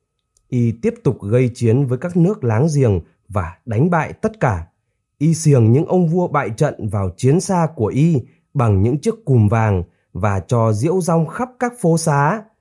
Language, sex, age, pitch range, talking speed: Vietnamese, male, 20-39, 105-155 Hz, 190 wpm